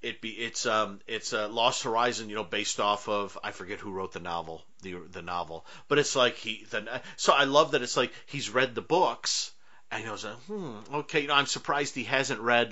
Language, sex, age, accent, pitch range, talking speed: English, male, 40-59, American, 105-135 Hz, 235 wpm